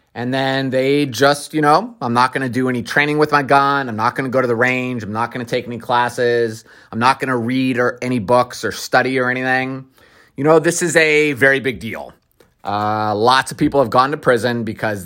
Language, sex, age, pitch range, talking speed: English, male, 30-49, 110-135 Hz, 240 wpm